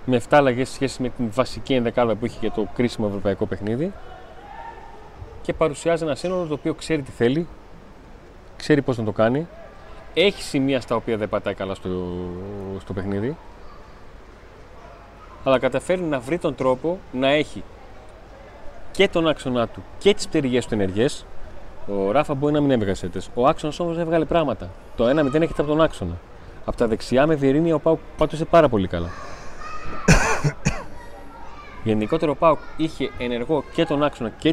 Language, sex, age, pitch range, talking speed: Greek, male, 30-49, 110-160 Hz, 120 wpm